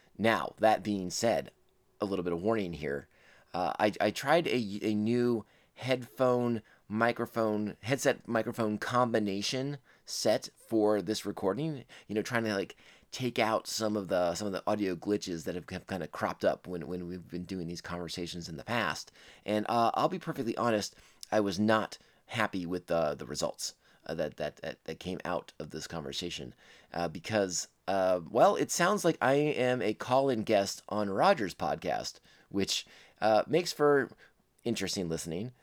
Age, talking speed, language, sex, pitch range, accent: 30-49, 175 wpm, English, male, 90-120 Hz, American